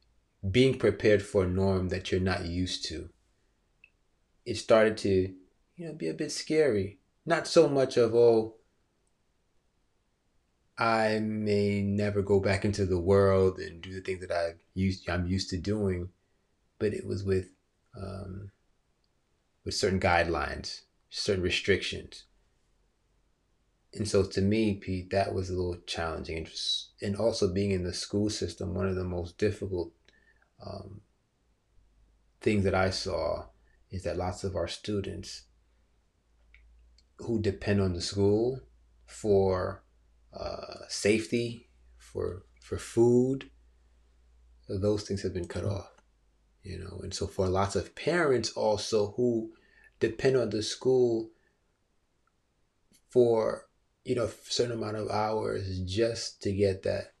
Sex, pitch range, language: male, 90-105 Hz, English